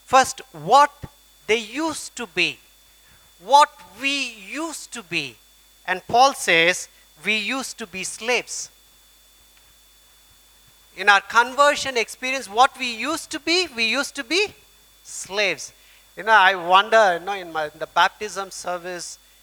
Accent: Indian